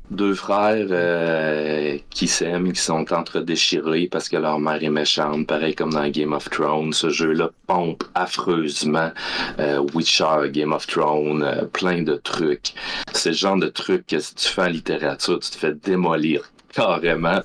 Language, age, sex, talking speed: French, 30-49, male, 170 wpm